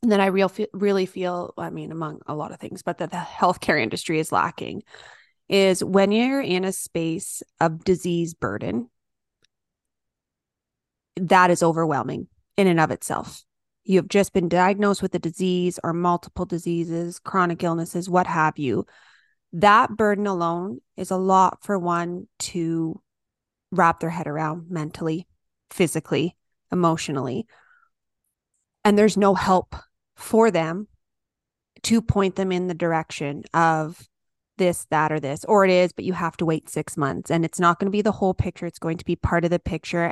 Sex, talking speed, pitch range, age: female, 165 wpm, 165-195 Hz, 30-49